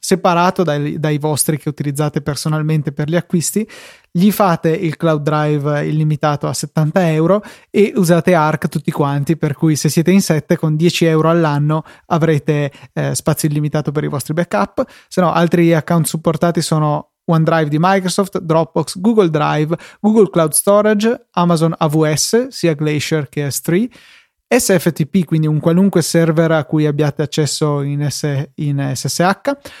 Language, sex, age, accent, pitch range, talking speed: Italian, male, 20-39, native, 155-185 Hz, 155 wpm